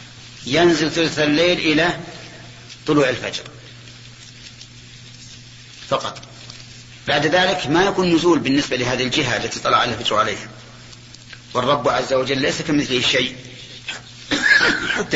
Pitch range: 120-150 Hz